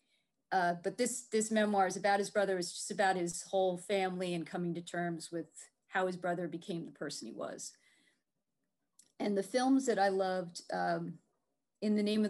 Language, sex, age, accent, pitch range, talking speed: English, female, 30-49, American, 175-200 Hz, 190 wpm